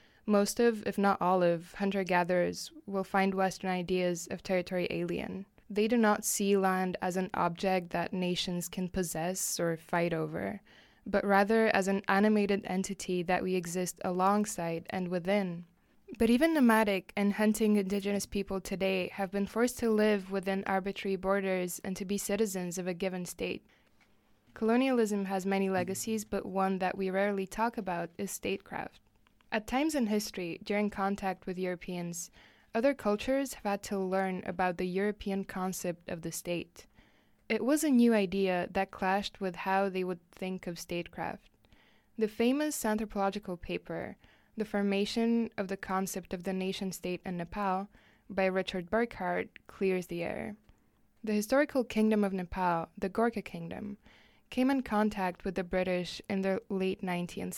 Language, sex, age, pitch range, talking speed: English, female, 20-39, 185-210 Hz, 155 wpm